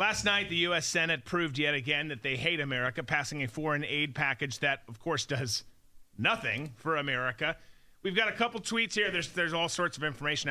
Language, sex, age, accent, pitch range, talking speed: English, male, 30-49, American, 125-165 Hz, 205 wpm